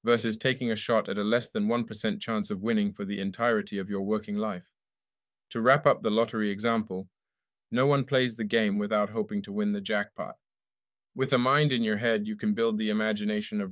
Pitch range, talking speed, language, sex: 105-125 Hz, 210 wpm, English, male